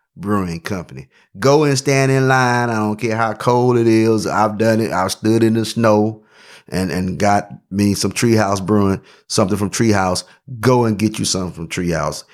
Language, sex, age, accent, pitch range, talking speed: English, male, 30-49, American, 95-115 Hz, 190 wpm